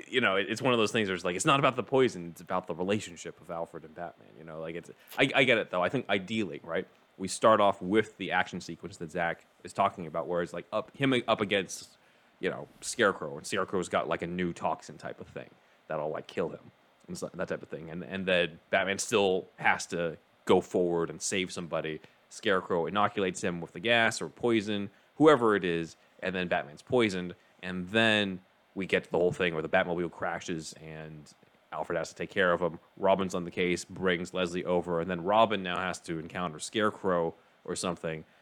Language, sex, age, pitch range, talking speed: English, male, 30-49, 85-100 Hz, 220 wpm